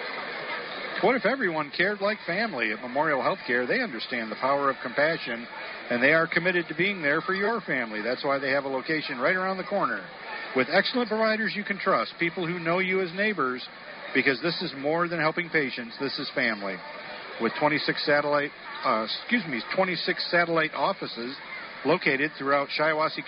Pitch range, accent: 140-185 Hz, American